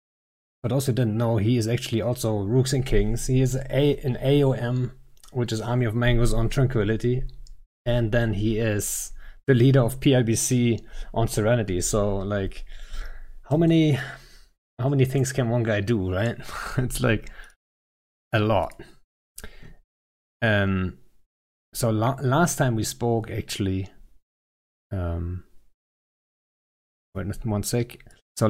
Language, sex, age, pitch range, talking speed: English, male, 30-49, 95-120 Hz, 125 wpm